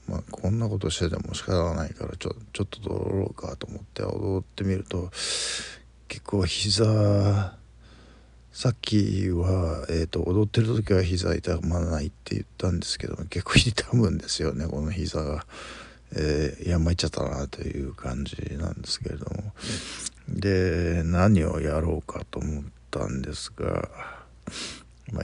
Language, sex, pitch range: Japanese, male, 75-100 Hz